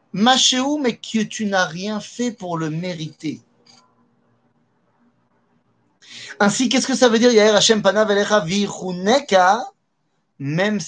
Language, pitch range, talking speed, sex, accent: French, 140-205 Hz, 90 wpm, male, French